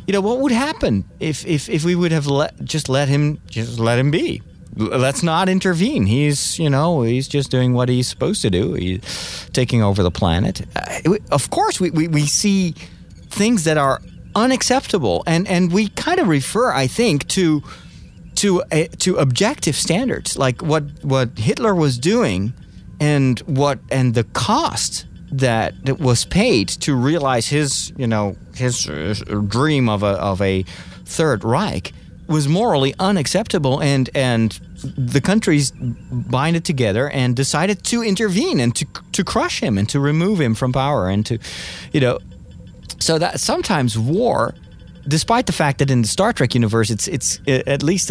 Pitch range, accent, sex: 110-160 Hz, American, male